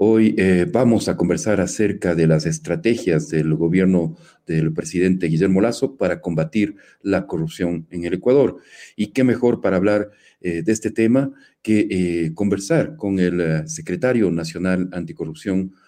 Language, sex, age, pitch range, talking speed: Spanish, male, 40-59, 80-95 Hz, 145 wpm